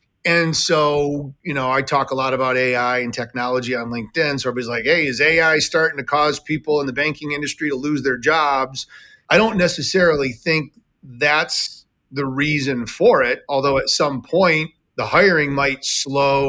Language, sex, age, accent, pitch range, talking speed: English, male, 30-49, American, 125-145 Hz, 180 wpm